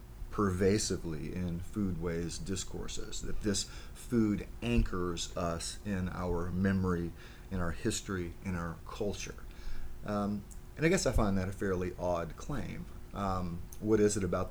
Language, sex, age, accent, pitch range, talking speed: English, male, 30-49, American, 85-100 Hz, 140 wpm